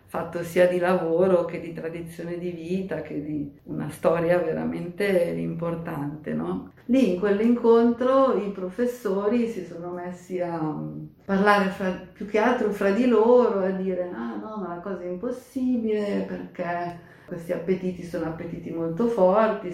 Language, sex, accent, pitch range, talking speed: Italian, female, native, 160-200 Hz, 145 wpm